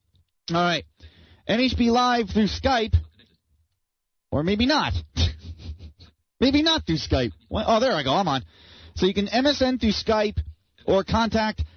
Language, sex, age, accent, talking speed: English, male, 30-49, American, 140 wpm